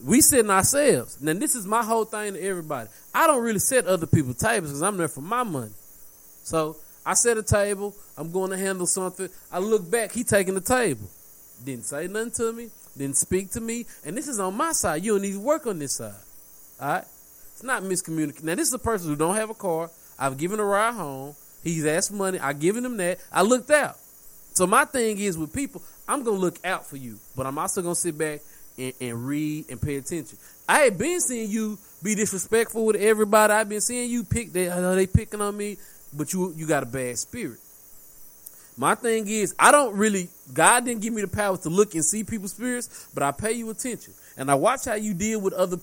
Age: 20-39